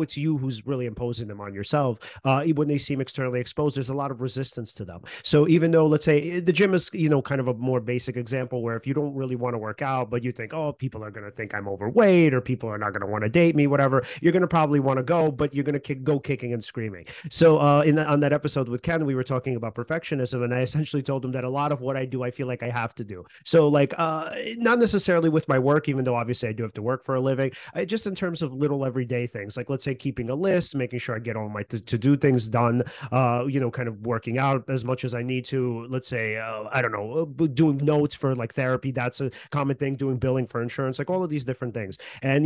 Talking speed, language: 285 wpm, English